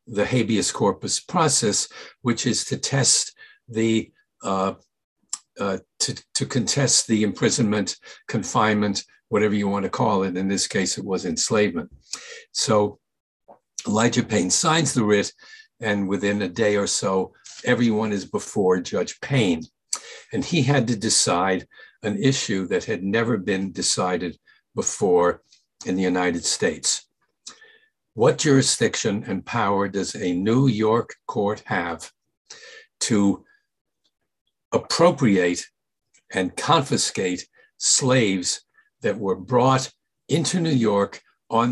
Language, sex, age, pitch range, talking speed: English, male, 60-79, 100-145 Hz, 120 wpm